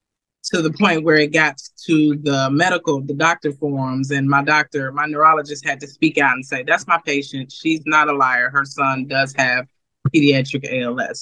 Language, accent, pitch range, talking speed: English, American, 140-170 Hz, 195 wpm